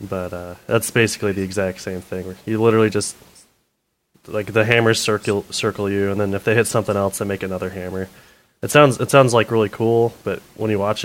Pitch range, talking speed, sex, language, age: 95-110 Hz, 210 wpm, male, English, 20-39